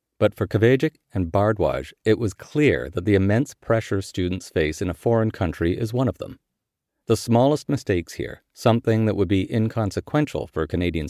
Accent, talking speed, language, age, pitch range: American, 185 wpm, English, 50-69, 90-115 Hz